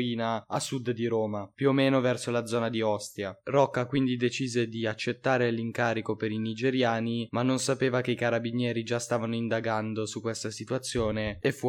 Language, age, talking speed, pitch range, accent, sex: Italian, 20-39, 180 wpm, 115-130 Hz, native, male